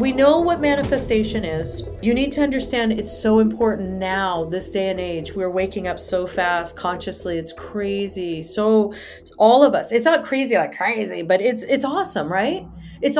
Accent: American